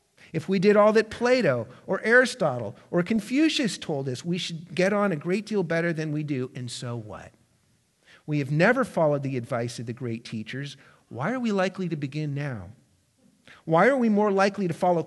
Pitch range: 130-190 Hz